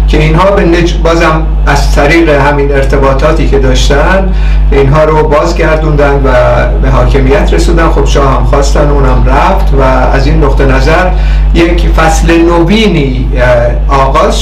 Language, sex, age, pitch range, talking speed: Persian, male, 50-69, 135-175 Hz, 135 wpm